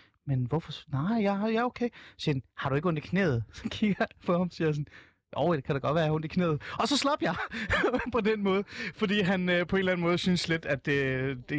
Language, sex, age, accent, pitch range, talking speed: Danish, male, 30-49, native, 140-195 Hz, 290 wpm